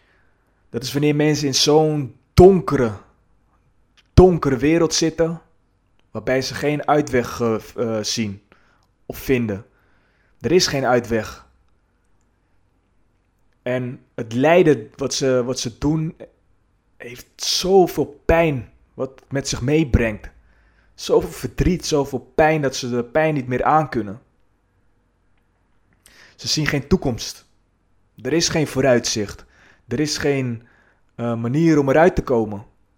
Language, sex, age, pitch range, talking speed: Dutch, male, 20-39, 100-140 Hz, 115 wpm